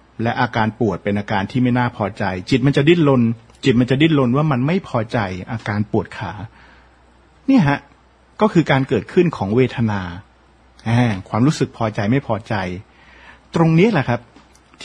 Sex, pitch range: male, 110-155 Hz